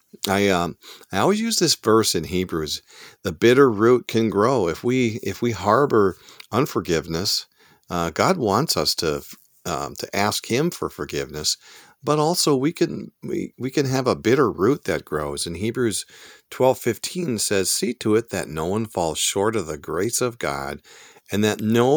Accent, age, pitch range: American, 50-69, 85-115 Hz